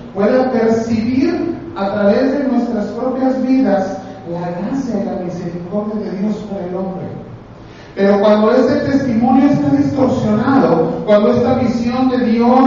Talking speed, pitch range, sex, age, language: 135 wpm, 185-255 Hz, male, 40-59, Spanish